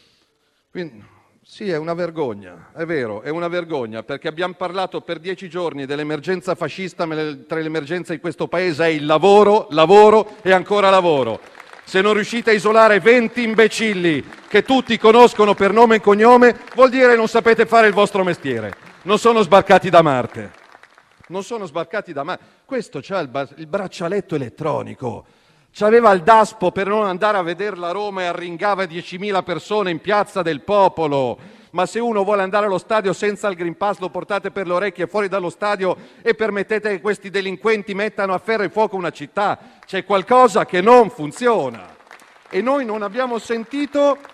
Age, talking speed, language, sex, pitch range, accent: 40-59, 175 wpm, Italian, male, 165-220 Hz, native